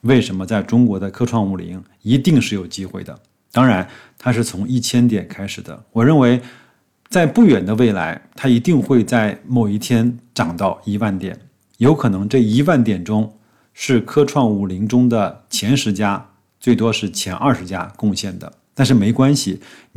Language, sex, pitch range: Chinese, male, 100-125 Hz